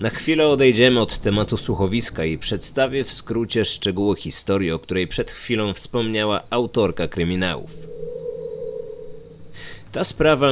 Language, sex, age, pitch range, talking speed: Polish, male, 20-39, 95-120 Hz, 120 wpm